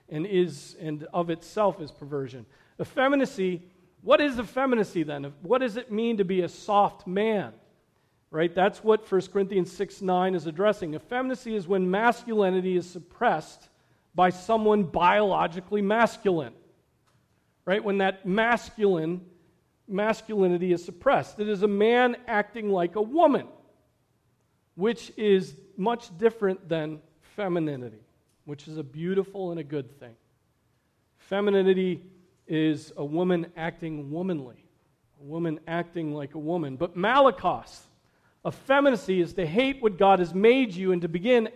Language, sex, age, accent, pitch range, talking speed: English, male, 40-59, American, 160-210 Hz, 135 wpm